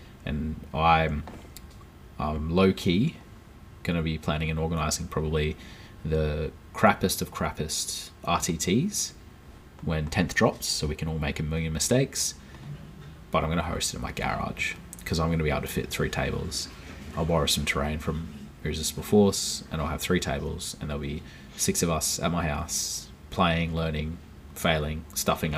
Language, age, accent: English, 20-39, Australian